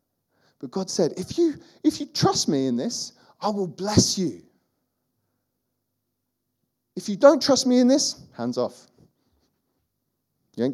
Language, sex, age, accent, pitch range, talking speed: English, male, 30-49, British, 125-195 Hz, 145 wpm